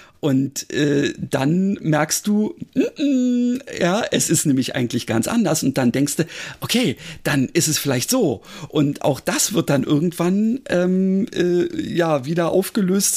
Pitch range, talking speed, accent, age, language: 155-195 Hz, 150 wpm, German, 50-69, German